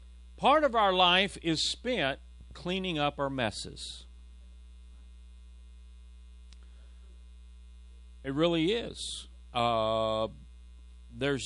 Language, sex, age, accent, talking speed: English, male, 40-59, American, 80 wpm